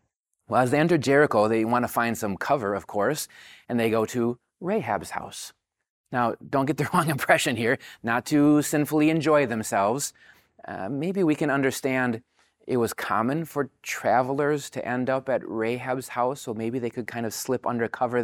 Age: 30-49